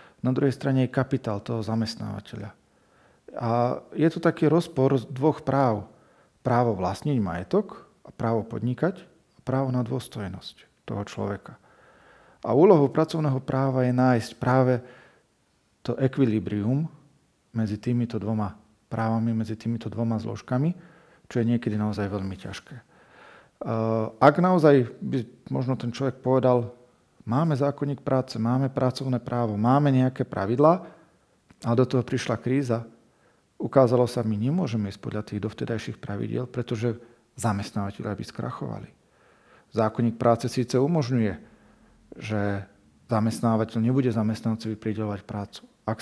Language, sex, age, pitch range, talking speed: Slovak, male, 40-59, 110-130 Hz, 120 wpm